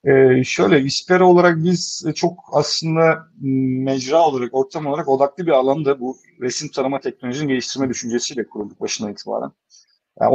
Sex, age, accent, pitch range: male, 50-69, native, 120-140 Hz